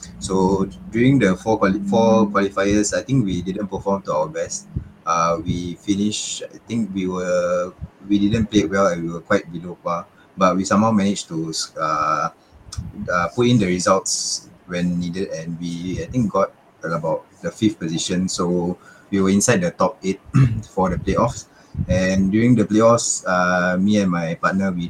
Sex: male